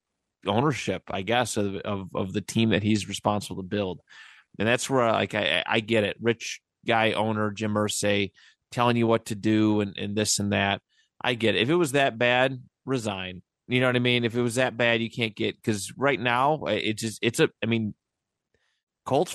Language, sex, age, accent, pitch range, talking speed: English, male, 30-49, American, 100-125 Hz, 210 wpm